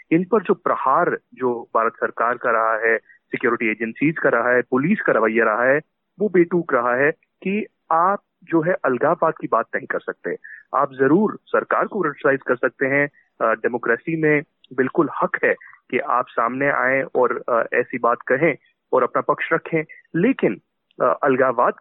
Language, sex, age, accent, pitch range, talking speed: Hindi, male, 30-49, native, 125-190 Hz, 170 wpm